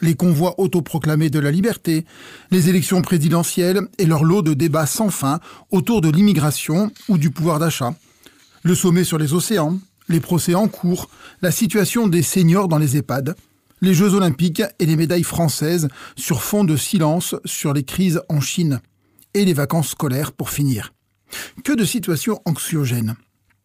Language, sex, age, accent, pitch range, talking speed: French, male, 40-59, French, 145-195 Hz, 165 wpm